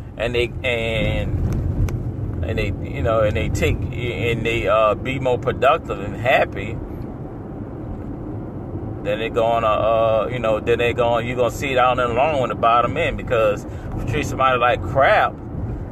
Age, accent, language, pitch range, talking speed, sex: 30-49, American, English, 100-120 Hz, 175 wpm, male